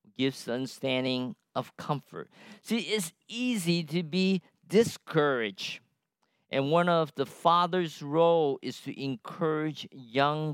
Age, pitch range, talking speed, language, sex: 50-69, 140-195 Hz, 115 wpm, English, male